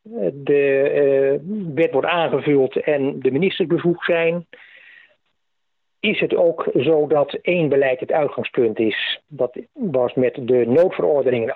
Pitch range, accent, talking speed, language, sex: 125-175 Hz, Dutch, 125 wpm, Dutch, male